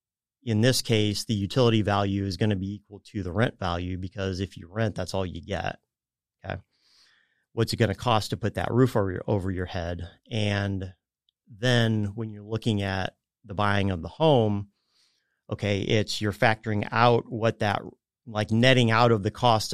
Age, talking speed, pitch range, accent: 30-49, 190 wpm, 95-115 Hz, American